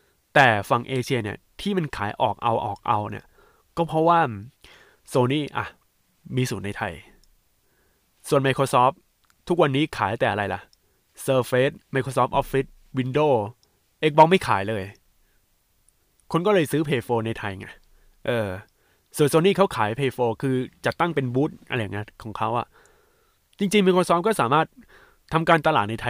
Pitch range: 115-155 Hz